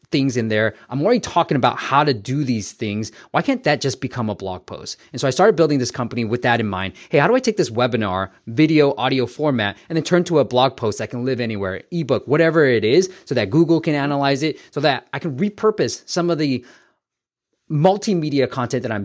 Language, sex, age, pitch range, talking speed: English, male, 20-39, 110-145 Hz, 235 wpm